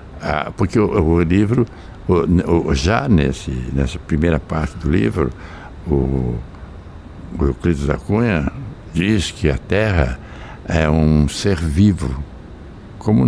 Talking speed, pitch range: 115 wpm, 80-100 Hz